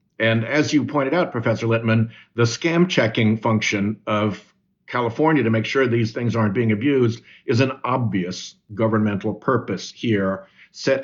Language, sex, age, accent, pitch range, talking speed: English, male, 60-79, American, 105-130 Hz, 150 wpm